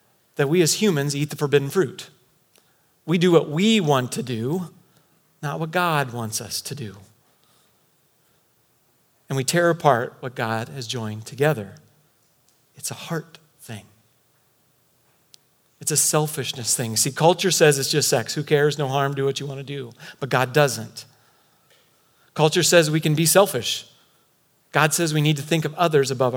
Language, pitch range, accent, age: English, 125-165 Hz, American, 40-59